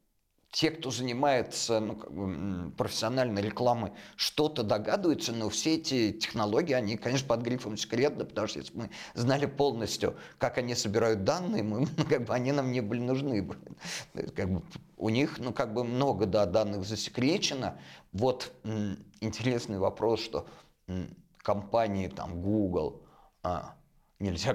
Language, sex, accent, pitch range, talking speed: Russian, male, native, 100-125 Hz, 145 wpm